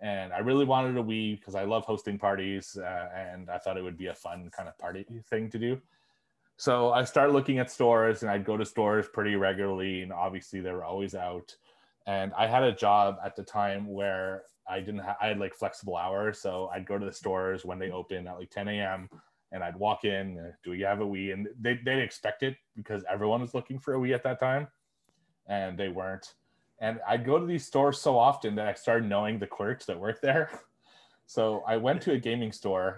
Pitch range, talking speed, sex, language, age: 95-115 Hz, 225 wpm, male, English, 30-49